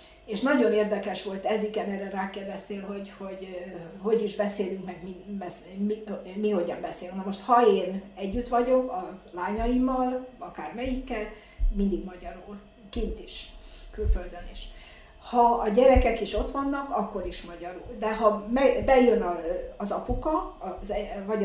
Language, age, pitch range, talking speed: Hungarian, 60-79, 195-235 Hz, 135 wpm